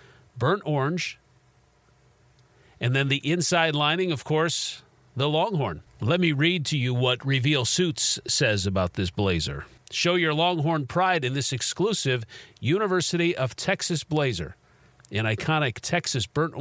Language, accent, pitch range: English, American, 120-160 Hz